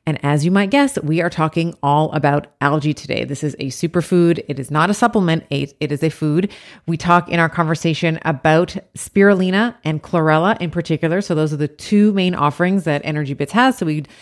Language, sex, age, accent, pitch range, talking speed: English, female, 30-49, American, 150-180 Hz, 205 wpm